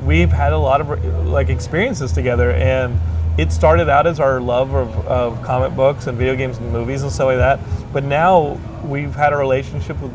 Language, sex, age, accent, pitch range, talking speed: English, male, 30-49, American, 115-135 Hz, 205 wpm